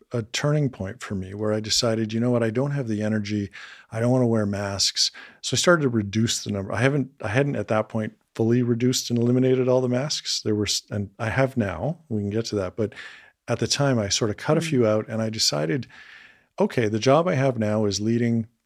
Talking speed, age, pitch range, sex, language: 245 wpm, 40-59, 105-125 Hz, male, English